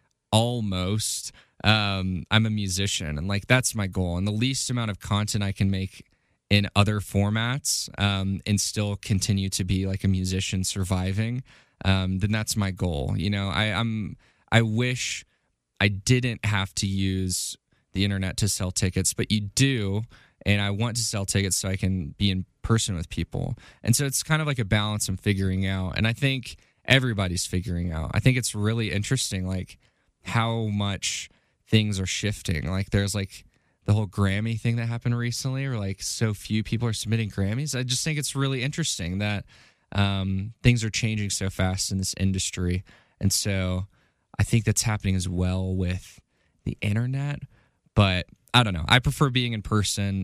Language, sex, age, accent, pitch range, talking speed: English, male, 20-39, American, 95-115 Hz, 180 wpm